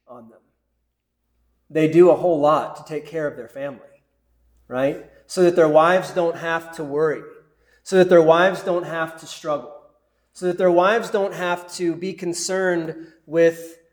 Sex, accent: male, American